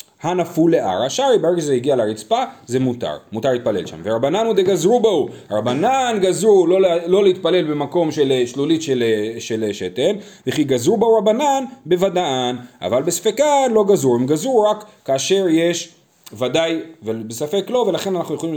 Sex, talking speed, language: male, 150 wpm, Hebrew